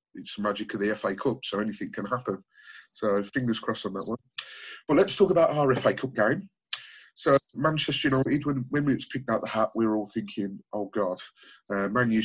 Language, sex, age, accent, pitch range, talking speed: English, male, 30-49, British, 105-130 Hz, 215 wpm